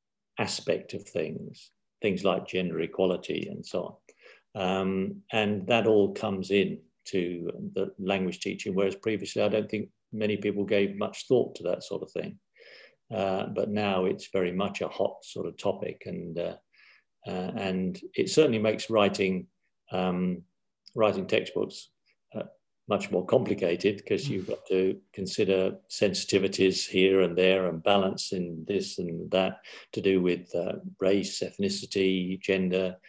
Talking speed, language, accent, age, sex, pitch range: 150 wpm, Czech, British, 50-69, male, 95-110 Hz